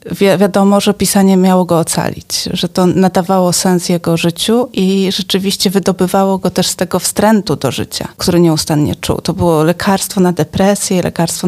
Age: 30-49